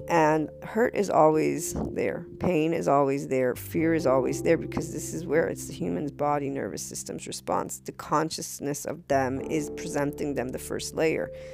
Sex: female